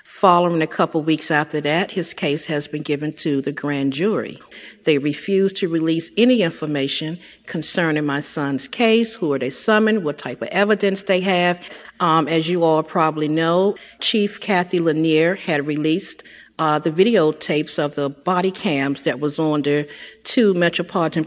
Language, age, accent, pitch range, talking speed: English, 50-69, American, 145-180 Hz, 170 wpm